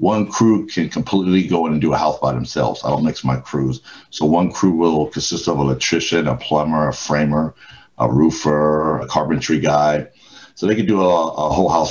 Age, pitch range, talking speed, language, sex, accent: 60-79, 75-95 Hz, 210 wpm, English, male, American